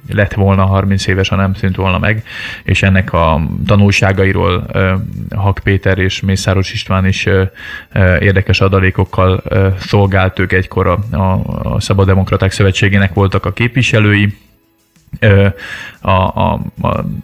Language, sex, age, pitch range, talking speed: Hungarian, male, 20-39, 95-105 Hz, 110 wpm